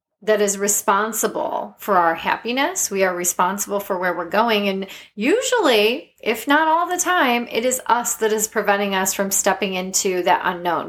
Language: English